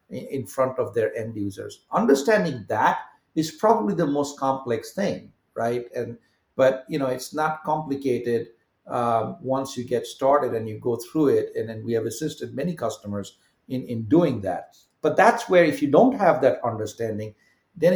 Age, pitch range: 50-69, 115-145 Hz